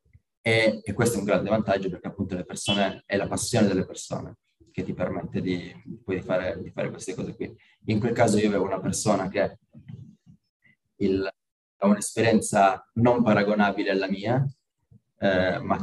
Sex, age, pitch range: male, 20-39, 95-115 Hz